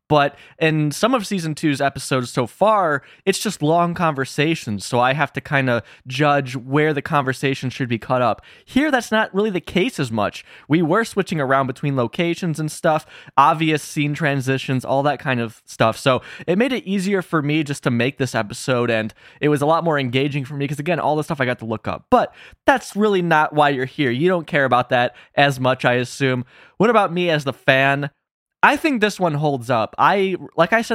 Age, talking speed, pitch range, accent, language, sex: 20-39, 220 wpm, 130-170 Hz, American, English, male